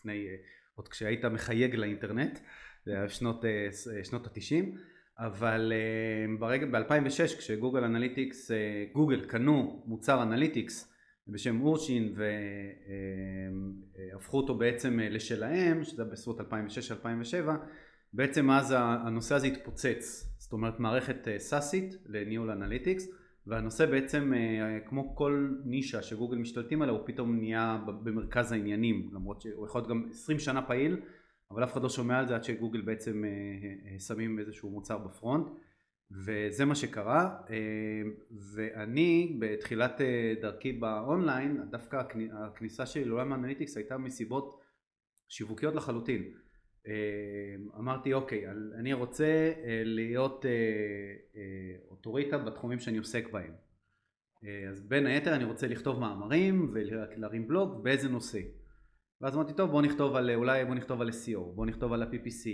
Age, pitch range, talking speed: 30-49, 105-135 Hz, 125 wpm